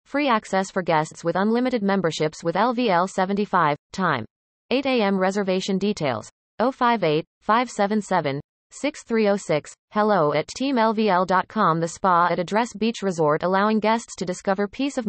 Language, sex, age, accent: English, female, 30-49, American